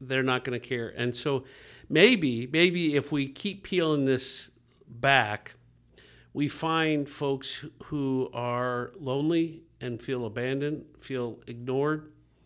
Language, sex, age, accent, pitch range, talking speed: English, male, 50-69, American, 125-150 Hz, 125 wpm